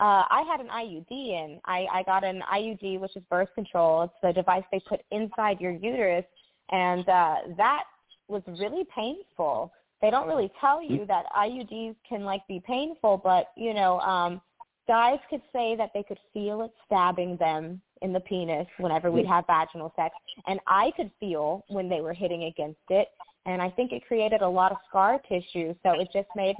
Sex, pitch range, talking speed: female, 180-240 Hz, 190 wpm